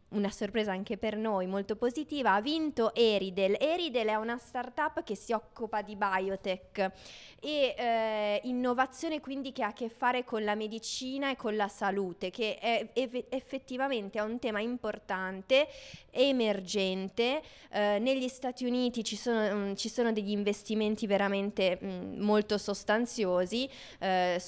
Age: 20-39